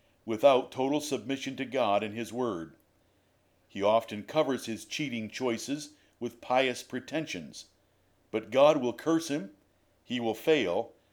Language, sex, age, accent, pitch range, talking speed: English, male, 50-69, American, 100-135 Hz, 135 wpm